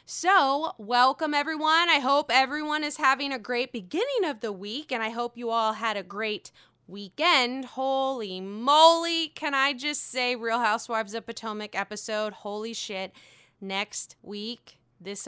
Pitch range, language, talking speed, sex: 210-290 Hz, English, 155 wpm, female